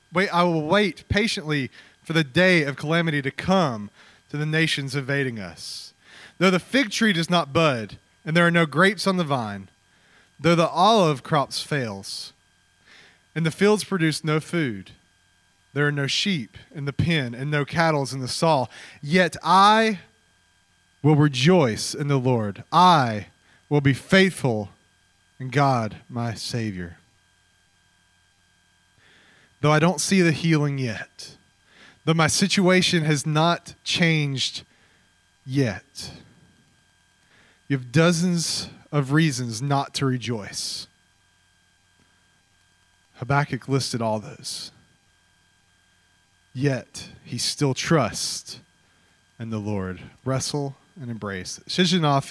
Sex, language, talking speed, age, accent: male, English, 125 wpm, 30-49, American